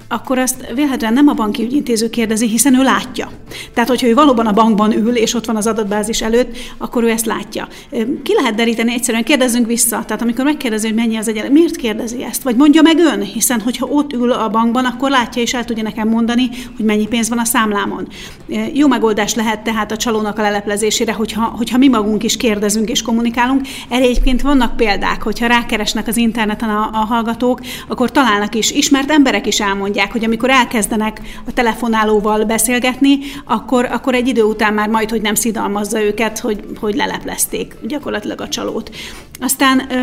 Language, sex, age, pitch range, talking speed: Hungarian, female, 40-59, 220-250 Hz, 185 wpm